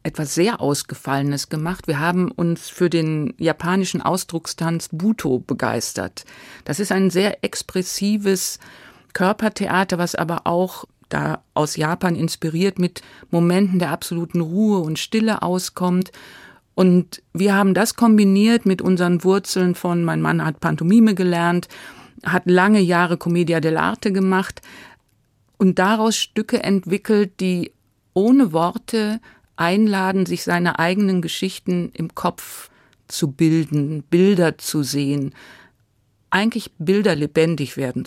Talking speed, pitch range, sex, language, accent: 120 wpm, 165-195 Hz, female, German, German